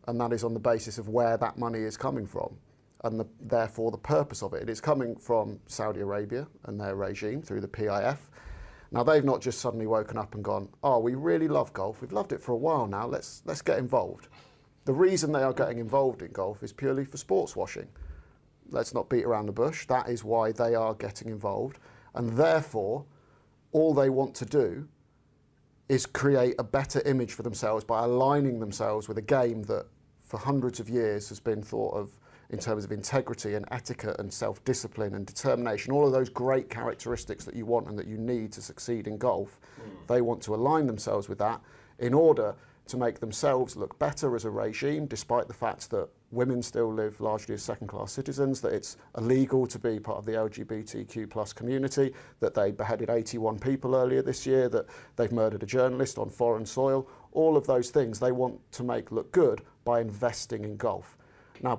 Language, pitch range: English, 110-135 Hz